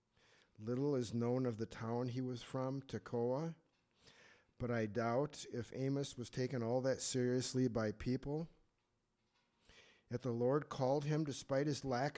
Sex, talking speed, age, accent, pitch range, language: male, 150 wpm, 50-69, American, 110-135 Hz, English